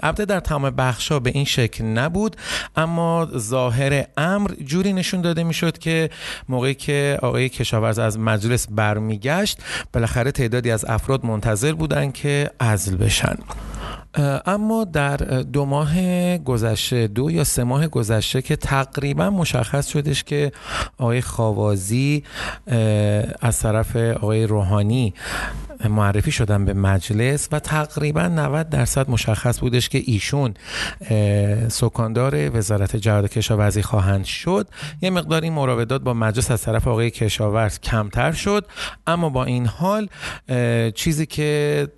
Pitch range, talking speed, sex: 110-145 Hz, 125 wpm, male